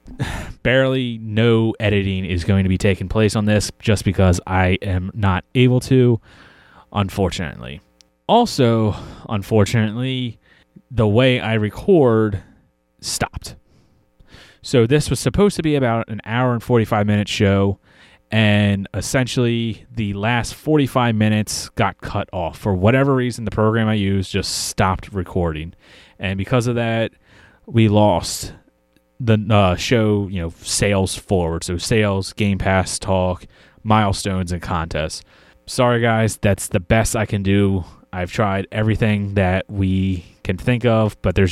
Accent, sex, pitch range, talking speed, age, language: American, male, 95-115 Hz, 140 wpm, 30-49, English